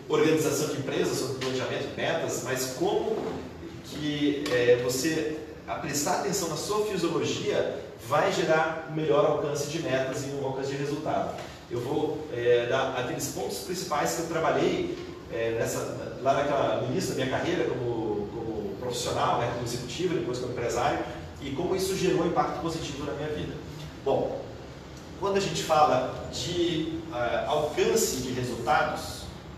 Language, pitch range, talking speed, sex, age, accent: Portuguese, 135-175 Hz, 150 wpm, male, 40-59, Brazilian